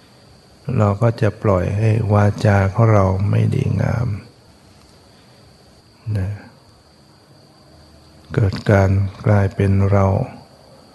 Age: 60-79